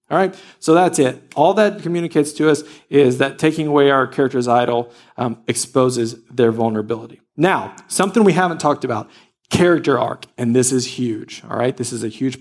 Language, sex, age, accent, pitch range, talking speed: English, male, 40-59, American, 130-185 Hz, 190 wpm